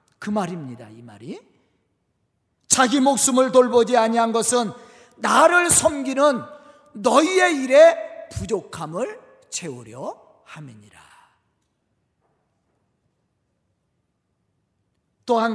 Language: Korean